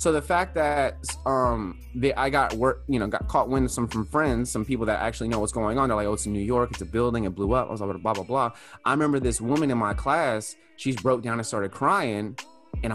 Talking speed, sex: 280 wpm, male